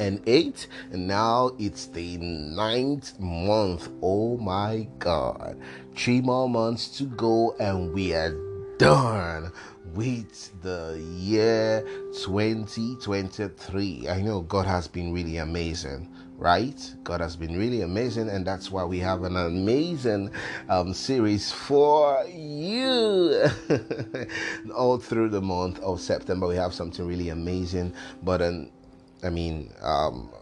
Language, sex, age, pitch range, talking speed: English, male, 30-49, 90-110 Hz, 125 wpm